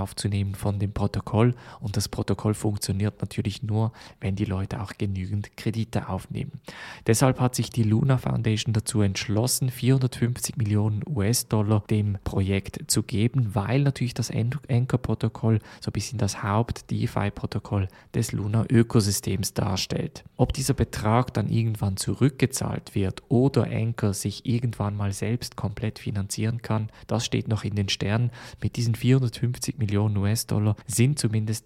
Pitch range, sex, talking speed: 105-120 Hz, male, 140 wpm